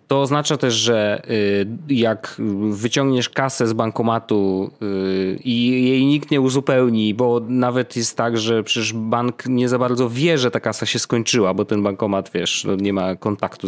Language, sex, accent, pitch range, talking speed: Polish, male, native, 100-125 Hz, 160 wpm